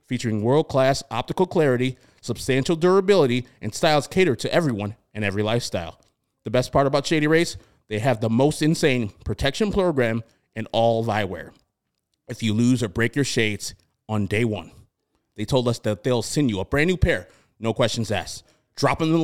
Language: English